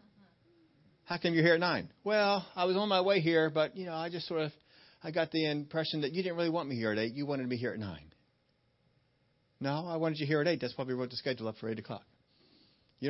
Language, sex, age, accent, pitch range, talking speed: English, male, 40-59, American, 125-170 Hz, 260 wpm